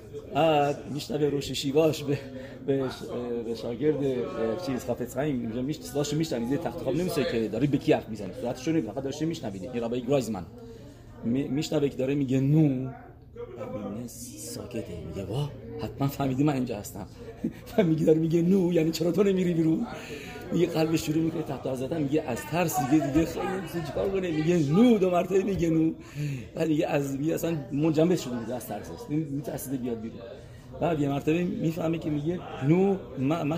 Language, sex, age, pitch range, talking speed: English, male, 40-59, 120-160 Hz, 145 wpm